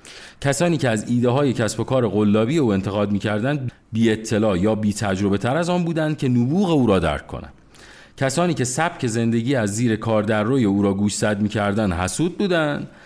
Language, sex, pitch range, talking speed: Persian, male, 105-155 Hz, 205 wpm